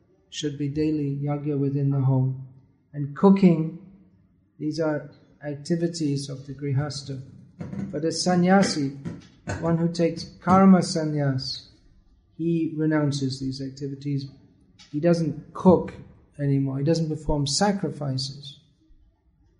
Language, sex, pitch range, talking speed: English, male, 135-165 Hz, 105 wpm